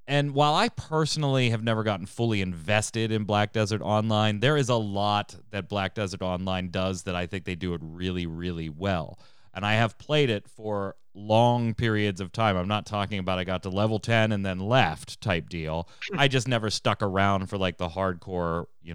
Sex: male